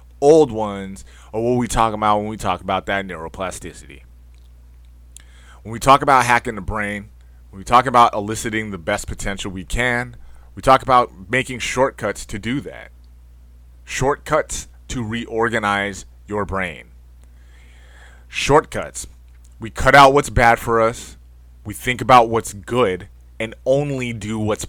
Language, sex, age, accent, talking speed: English, male, 30-49, American, 145 wpm